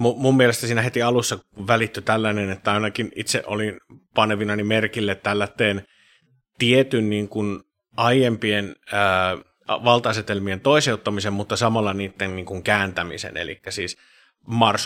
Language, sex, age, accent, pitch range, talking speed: Finnish, male, 30-49, native, 95-115 Hz, 115 wpm